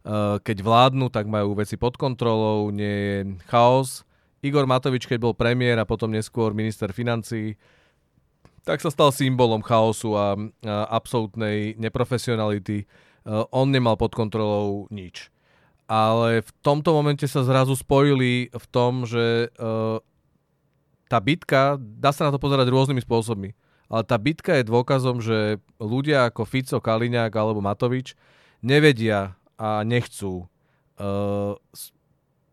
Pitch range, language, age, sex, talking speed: 110-130 Hz, Czech, 40-59, male, 125 wpm